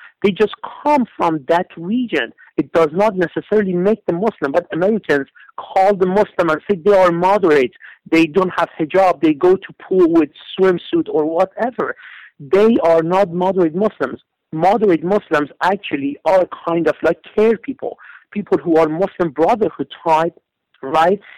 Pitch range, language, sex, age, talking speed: 160-205 Hz, English, male, 50-69, 155 wpm